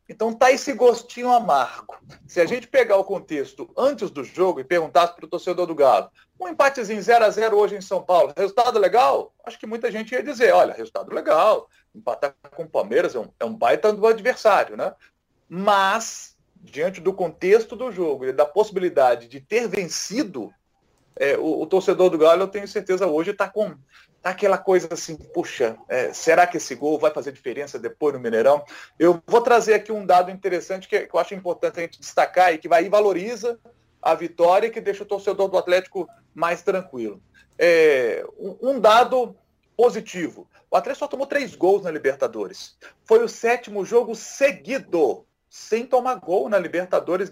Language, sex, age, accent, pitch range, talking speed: Portuguese, male, 40-59, Brazilian, 180-250 Hz, 185 wpm